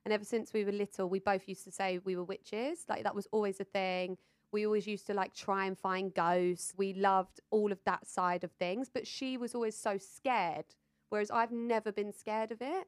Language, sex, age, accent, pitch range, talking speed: English, female, 20-39, British, 190-230 Hz, 235 wpm